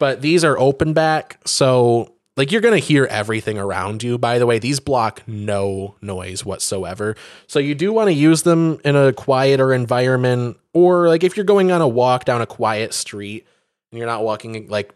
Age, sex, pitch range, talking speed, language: 20-39, male, 105-135 Hz, 200 wpm, English